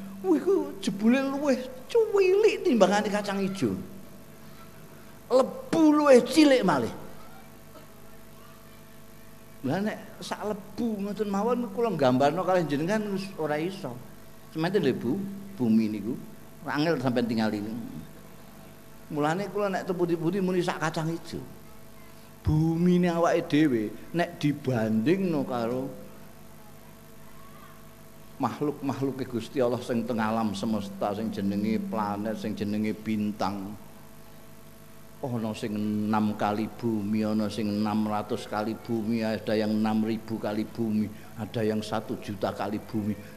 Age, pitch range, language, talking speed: 50-69, 110-180 Hz, English, 125 wpm